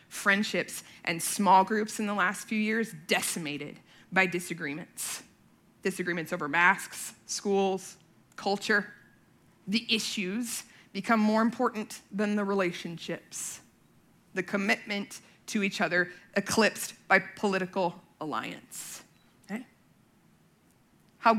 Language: English